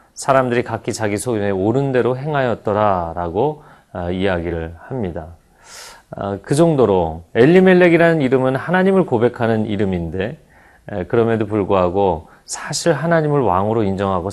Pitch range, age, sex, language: 95-130 Hz, 40-59, male, Korean